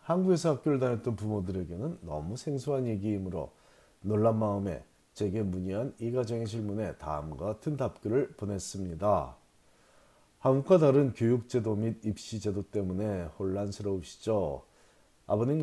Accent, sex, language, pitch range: native, male, Korean, 95-120 Hz